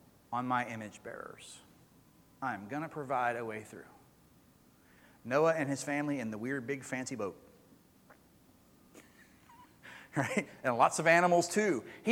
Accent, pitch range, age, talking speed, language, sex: American, 155-195 Hz, 40-59, 140 wpm, English, male